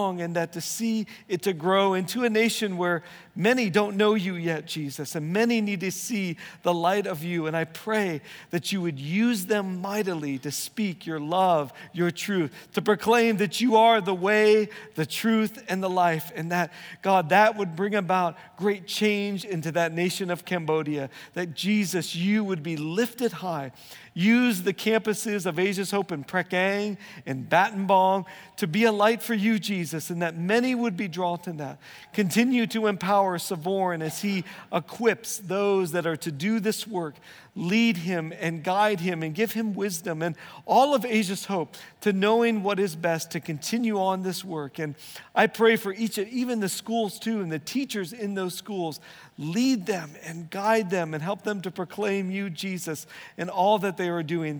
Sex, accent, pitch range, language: male, American, 170-210 Hz, English